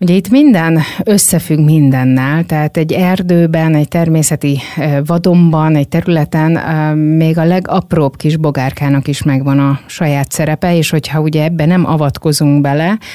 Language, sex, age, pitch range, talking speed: Hungarian, female, 30-49, 140-170 Hz, 135 wpm